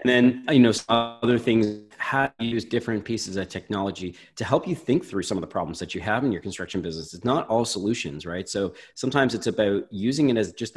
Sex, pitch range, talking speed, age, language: male, 95-115 Hz, 240 wpm, 30-49, English